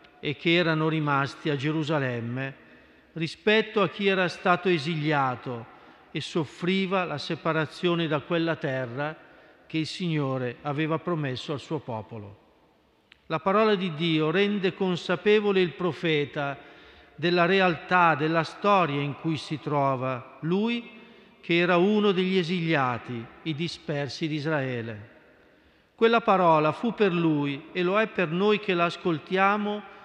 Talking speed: 130 wpm